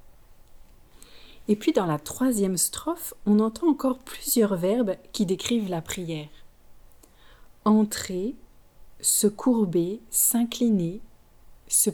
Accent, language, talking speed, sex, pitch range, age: French, French, 100 wpm, female, 160-215 Hz, 40-59